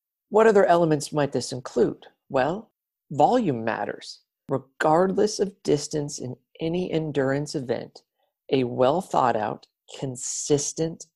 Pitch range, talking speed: 135-160 Hz, 100 wpm